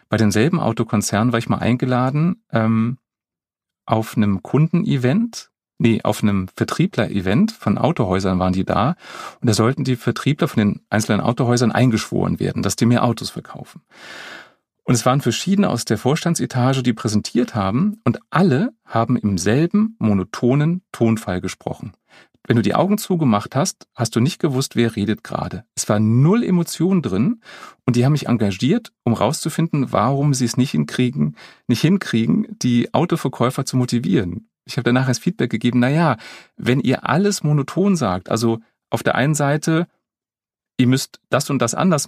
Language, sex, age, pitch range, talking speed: German, male, 40-59, 115-165 Hz, 165 wpm